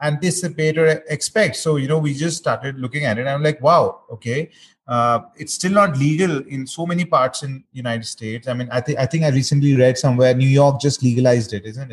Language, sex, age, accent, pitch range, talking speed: English, male, 30-49, Indian, 135-165 Hz, 230 wpm